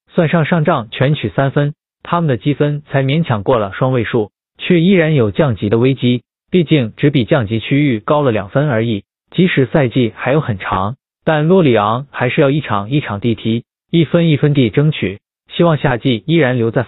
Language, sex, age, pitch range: Chinese, male, 20-39, 115-160 Hz